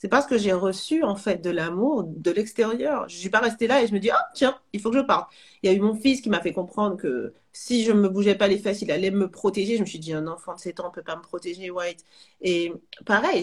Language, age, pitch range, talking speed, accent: French, 40-59, 180-245 Hz, 305 wpm, French